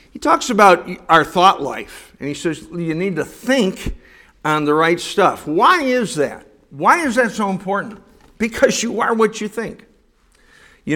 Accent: American